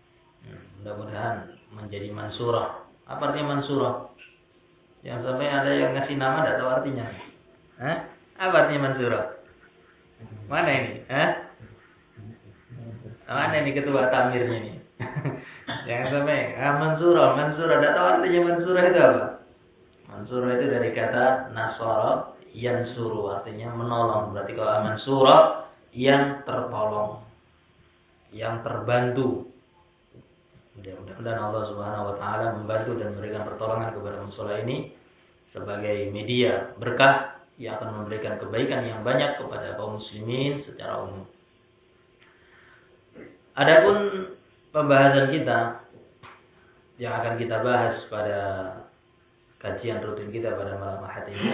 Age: 20-39